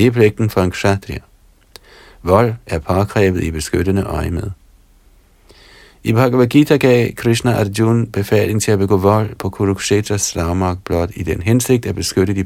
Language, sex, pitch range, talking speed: Danish, male, 90-115 Hz, 150 wpm